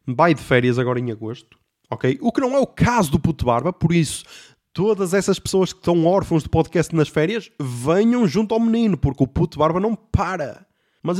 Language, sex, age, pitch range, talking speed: Portuguese, male, 20-39, 135-180 Hz, 210 wpm